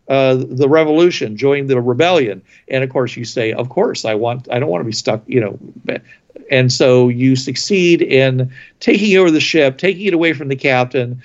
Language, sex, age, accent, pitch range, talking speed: English, male, 50-69, American, 130-170 Hz, 205 wpm